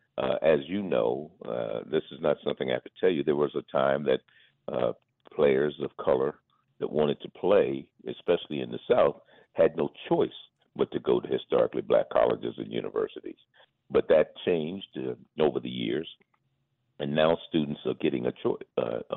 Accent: American